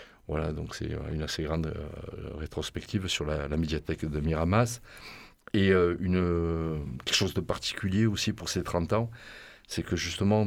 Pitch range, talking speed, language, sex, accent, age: 80-95 Hz, 165 wpm, French, male, French, 40-59